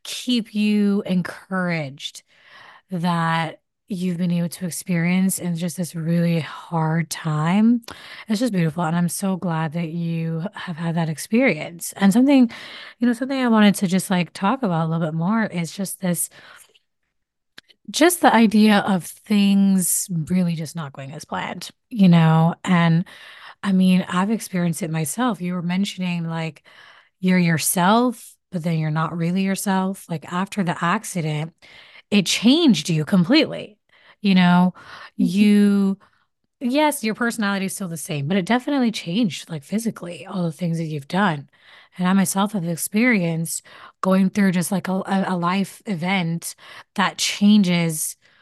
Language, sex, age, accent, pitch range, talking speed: English, female, 20-39, American, 170-205 Hz, 155 wpm